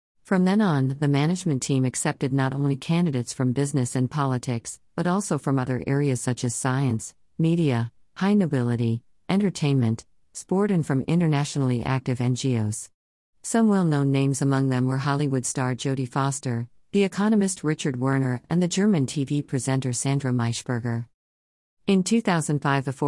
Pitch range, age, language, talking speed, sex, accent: 125-155 Hz, 50-69, English, 145 wpm, female, American